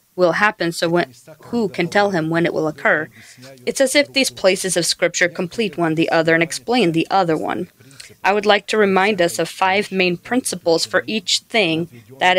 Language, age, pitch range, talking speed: English, 30-49, 160-195 Hz, 205 wpm